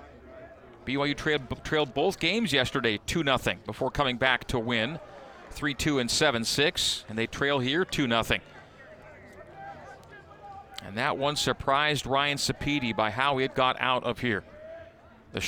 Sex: male